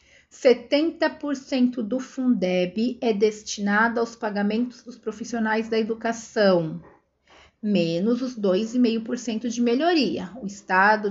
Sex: female